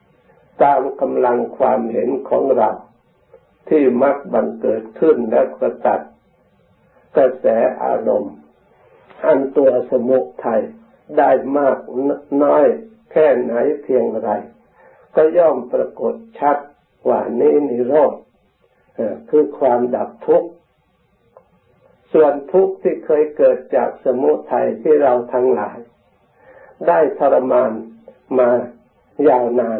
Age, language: 60-79, Thai